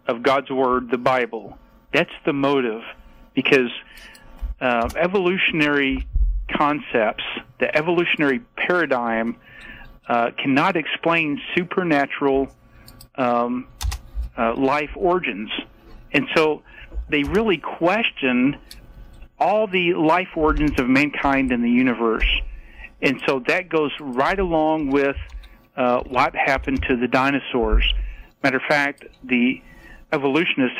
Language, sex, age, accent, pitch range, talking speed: English, male, 50-69, American, 120-160 Hz, 105 wpm